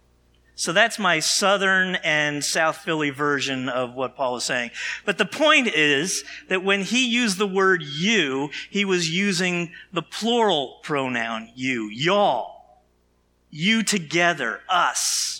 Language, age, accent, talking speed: English, 50-69, American, 135 wpm